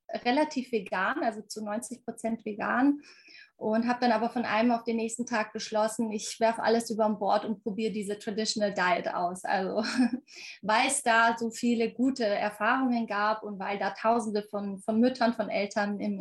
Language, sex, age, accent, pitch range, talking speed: German, female, 20-39, German, 215-255 Hz, 180 wpm